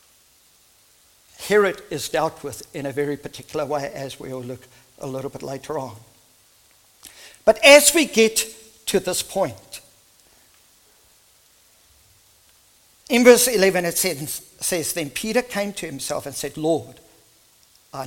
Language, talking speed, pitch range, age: English, 130 wpm, 115-180 Hz, 50-69